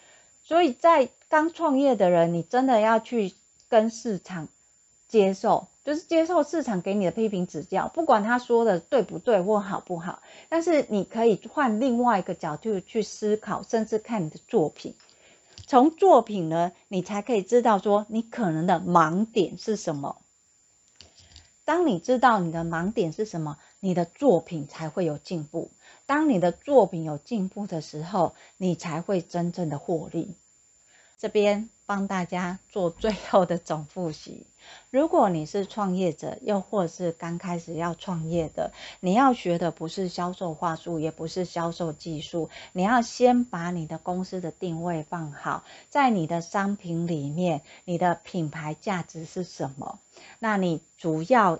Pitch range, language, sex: 170-220 Hz, Chinese, female